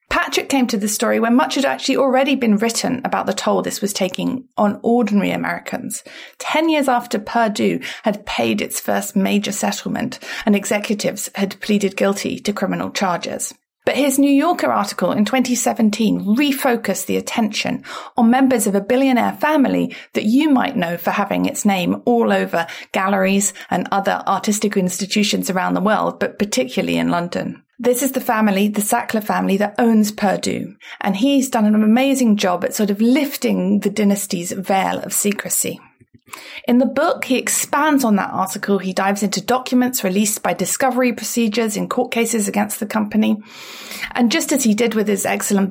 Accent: British